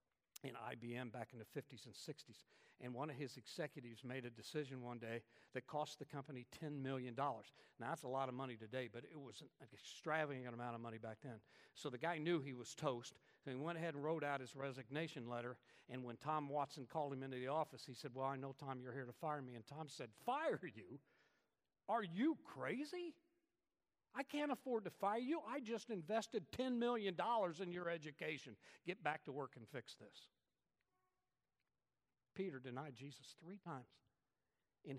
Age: 60-79